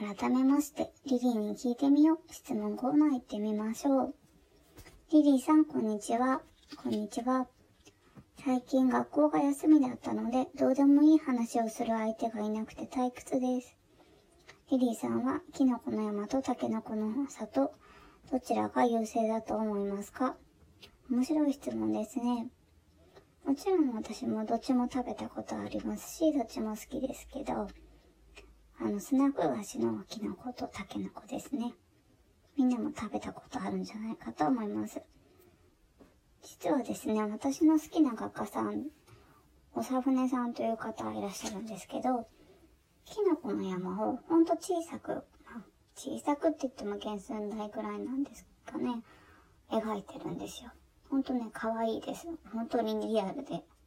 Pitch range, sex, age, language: 215-275 Hz, male, 20-39, Japanese